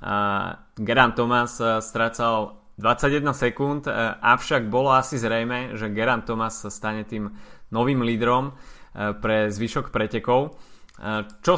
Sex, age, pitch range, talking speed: male, 20-39, 110-125 Hz, 105 wpm